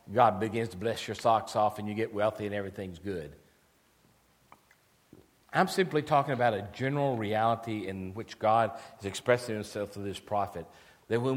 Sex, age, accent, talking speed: male, 50-69, American, 170 wpm